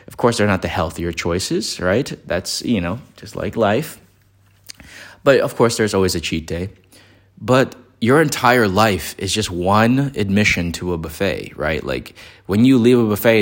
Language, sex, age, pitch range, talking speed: English, male, 20-39, 90-115 Hz, 180 wpm